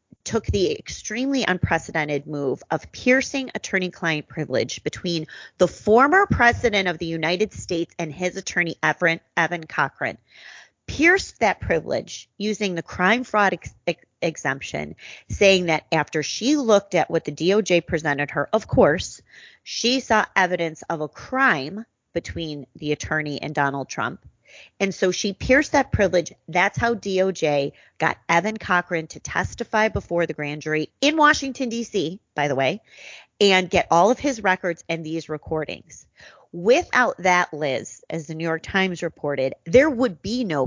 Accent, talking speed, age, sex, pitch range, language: American, 150 wpm, 30-49, female, 155-210 Hz, English